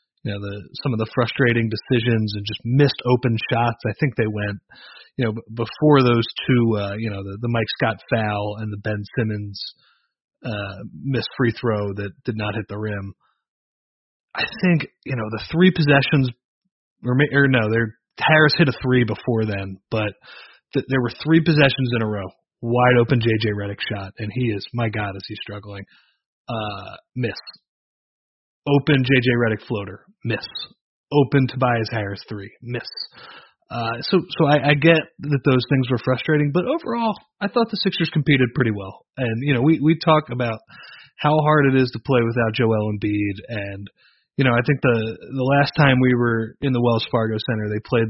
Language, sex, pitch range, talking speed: English, male, 110-140 Hz, 180 wpm